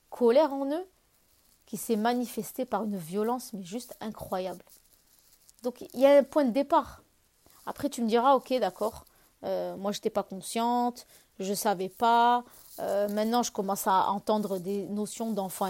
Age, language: 30-49, French